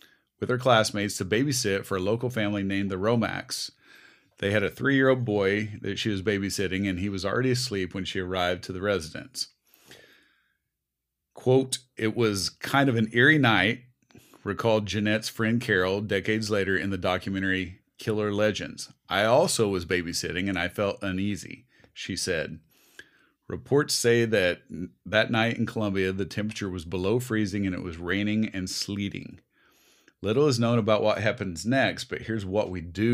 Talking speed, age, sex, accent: 165 wpm, 40-59, male, American